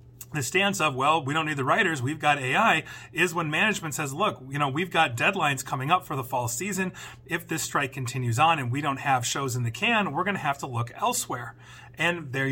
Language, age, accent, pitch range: English, 30-49, American, 125-160 Hz